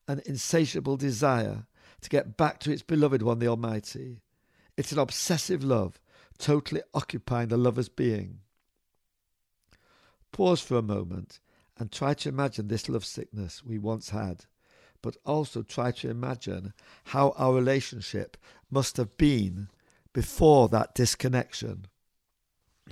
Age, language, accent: 60-79, English, British